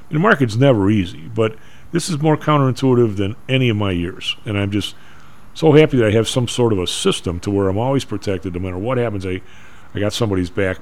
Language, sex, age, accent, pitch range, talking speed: English, male, 40-59, American, 95-120 Hz, 225 wpm